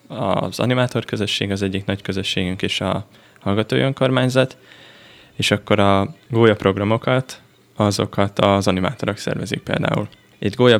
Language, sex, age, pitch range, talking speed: Hungarian, male, 10-29, 95-115 Hz, 120 wpm